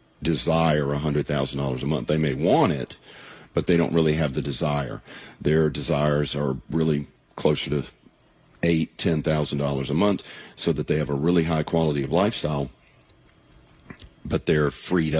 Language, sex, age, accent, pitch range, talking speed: English, male, 50-69, American, 70-80 Hz, 160 wpm